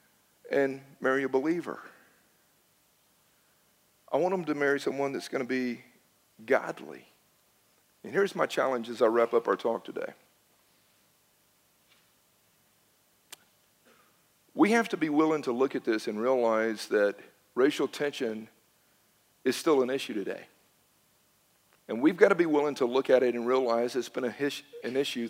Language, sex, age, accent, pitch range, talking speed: English, male, 50-69, American, 120-145 Hz, 145 wpm